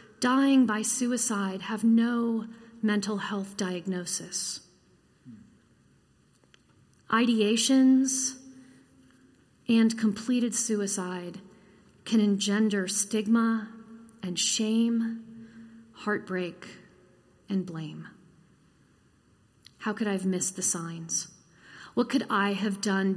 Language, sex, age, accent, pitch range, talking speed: English, female, 40-59, American, 195-230 Hz, 85 wpm